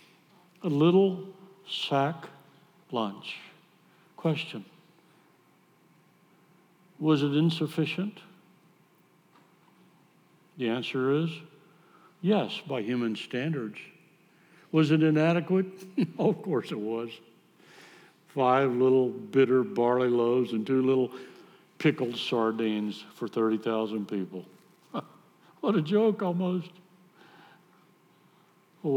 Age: 60-79